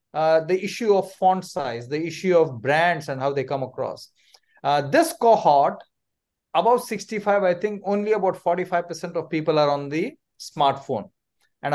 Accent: Indian